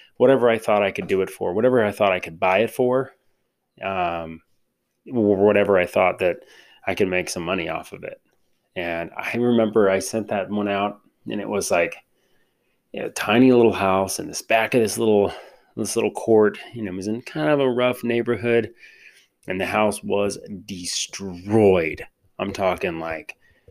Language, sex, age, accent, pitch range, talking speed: English, male, 30-49, American, 95-120 Hz, 185 wpm